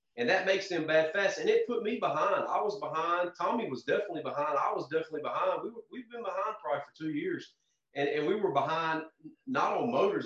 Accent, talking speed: American, 230 wpm